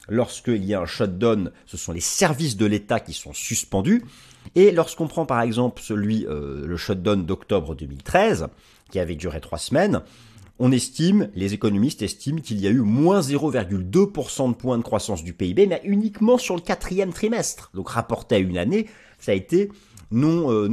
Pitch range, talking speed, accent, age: 100-160 Hz, 180 wpm, French, 30-49